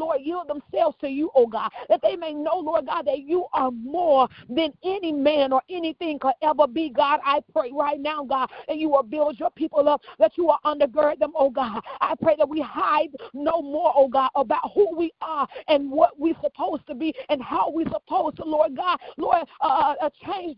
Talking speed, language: 220 wpm, English